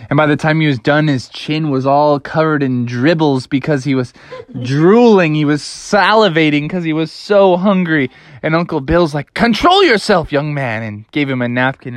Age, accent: 20-39, American